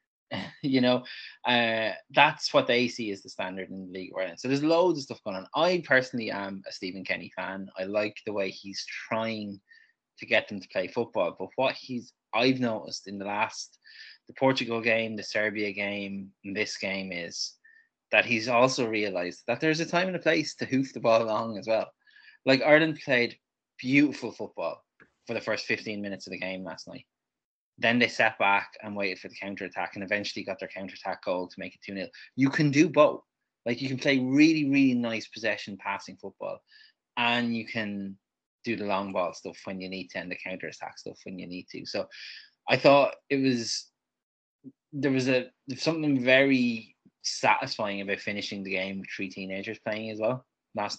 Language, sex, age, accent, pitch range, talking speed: English, male, 20-39, Irish, 100-130 Hz, 200 wpm